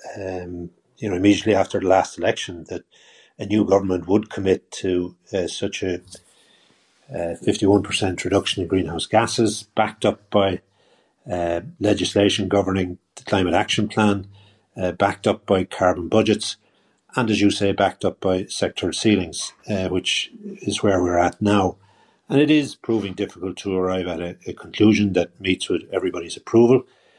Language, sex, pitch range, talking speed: English, male, 95-105 Hz, 160 wpm